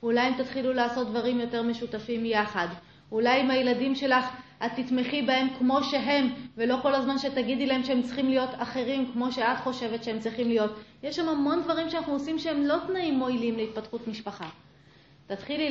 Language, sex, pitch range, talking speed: Hebrew, female, 225-270 Hz, 170 wpm